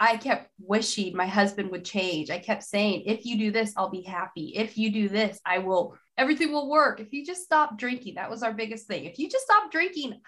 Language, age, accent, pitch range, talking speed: English, 20-39, American, 195-250 Hz, 240 wpm